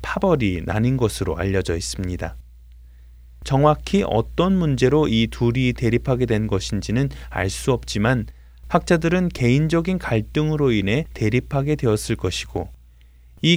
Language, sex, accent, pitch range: Korean, male, native, 95-145 Hz